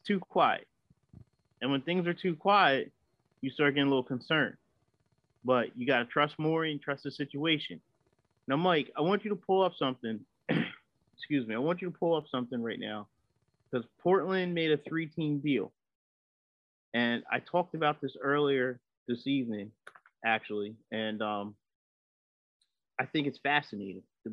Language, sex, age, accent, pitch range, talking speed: English, male, 30-49, American, 115-150 Hz, 165 wpm